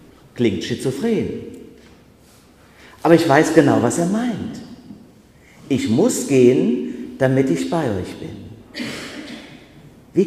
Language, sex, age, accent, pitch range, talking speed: German, male, 50-69, German, 110-175 Hz, 105 wpm